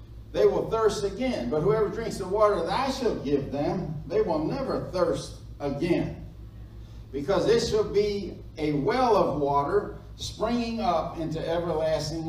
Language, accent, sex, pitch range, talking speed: English, American, male, 140-195 Hz, 150 wpm